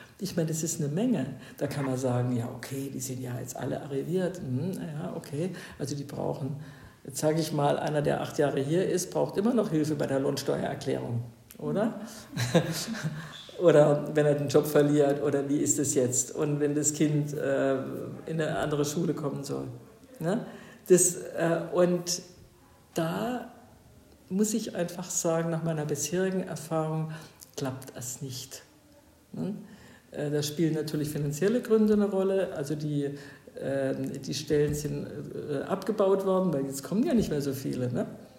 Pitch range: 140-185 Hz